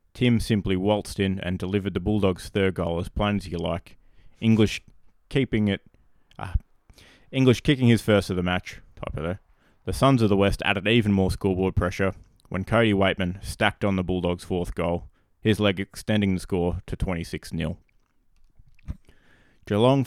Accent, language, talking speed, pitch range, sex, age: Australian, English, 160 wpm, 90-110 Hz, male, 20-39